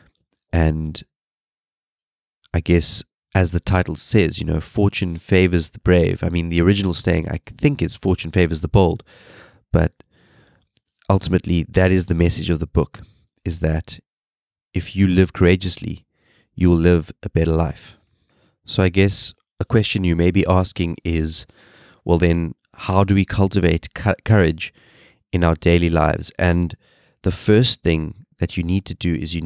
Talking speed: 160 wpm